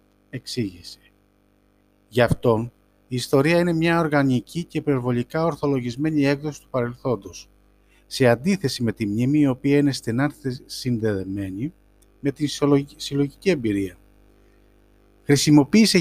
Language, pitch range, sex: Greek, 110-150 Hz, male